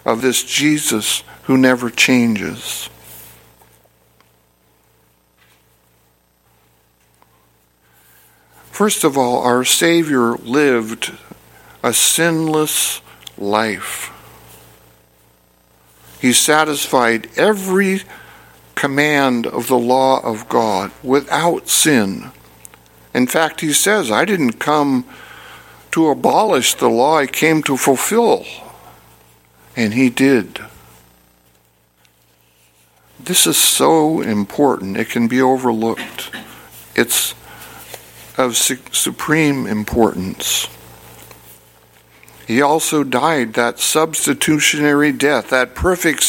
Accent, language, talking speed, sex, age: American, English, 85 wpm, male, 60-79